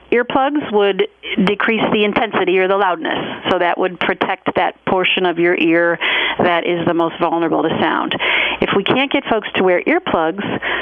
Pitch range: 175-230 Hz